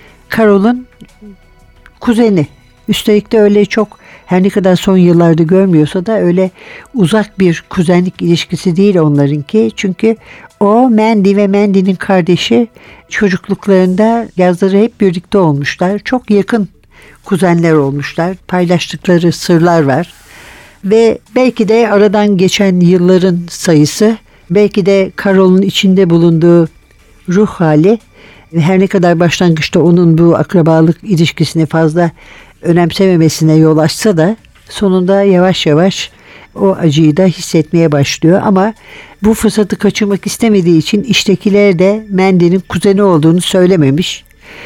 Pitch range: 165-205 Hz